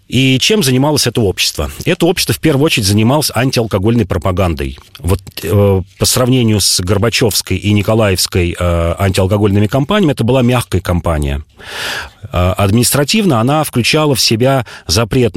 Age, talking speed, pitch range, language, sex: 40-59, 135 wpm, 95-120 Hz, Russian, male